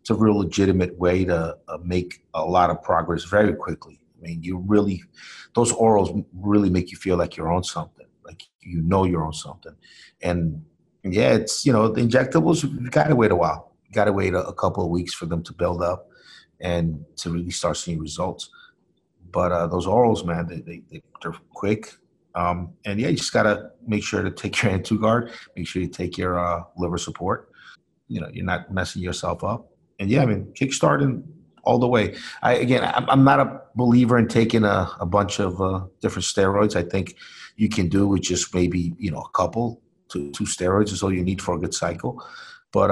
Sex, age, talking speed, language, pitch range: male, 30-49, 210 wpm, English, 85-105 Hz